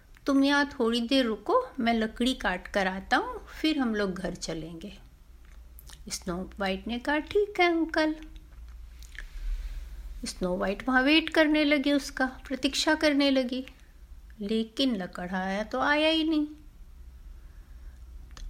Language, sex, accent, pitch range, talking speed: Hindi, female, native, 195-275 Hz, 130 wpm